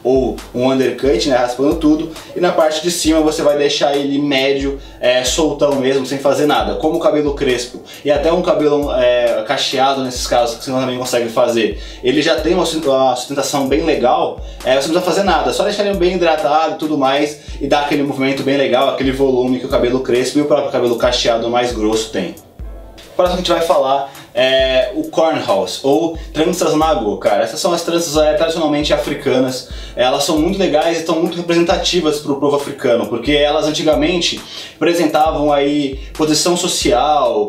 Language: Portuguese